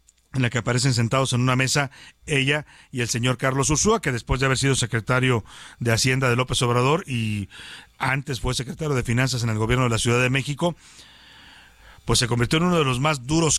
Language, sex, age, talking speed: Spanish, male, 40-59, 210 wpm